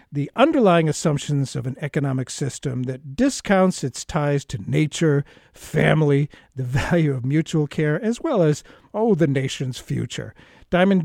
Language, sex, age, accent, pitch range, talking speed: English, male, 50-69, American, 135-180 Hz, 145 wpm